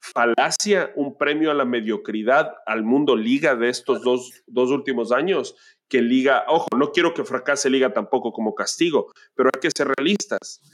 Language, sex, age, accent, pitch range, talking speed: Spanish, male, 40-59, Mexican, 130-210 Hz, 175 wpm